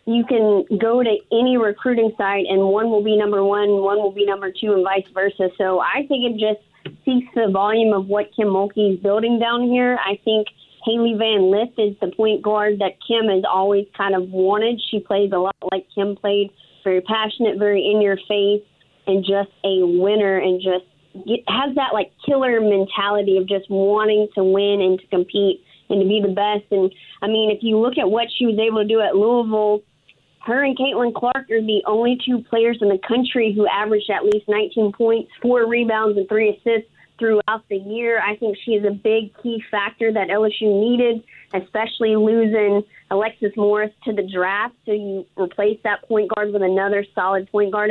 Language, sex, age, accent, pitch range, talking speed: English, female, 30-49, American, 200-225 Hz, 200 wpm